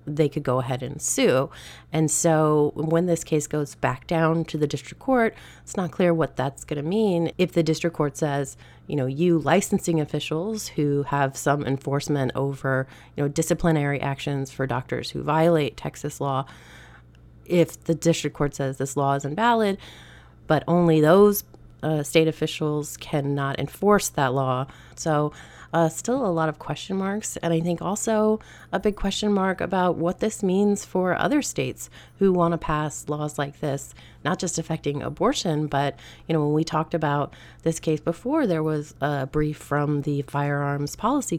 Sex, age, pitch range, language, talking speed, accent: female, 30-49, 145-175 Hz, English, 175 wpm, American